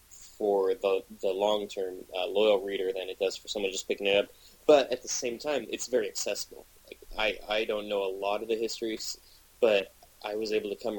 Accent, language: American, English